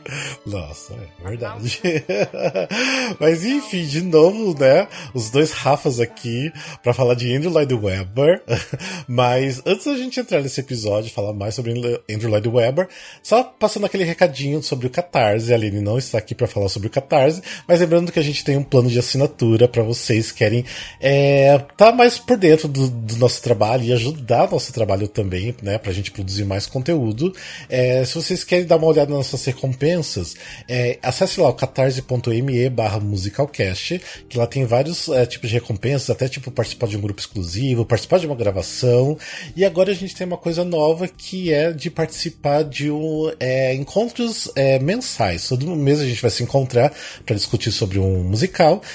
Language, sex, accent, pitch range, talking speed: Portuguese, male, Brazilian, 115-160 Hz, 185 wpm